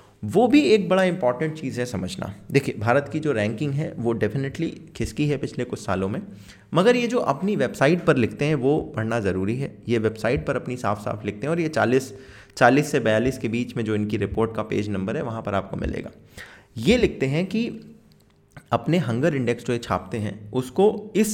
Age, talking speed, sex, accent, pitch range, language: 20-39, 210 wpm, male, native, 110-165 Hz, Hindi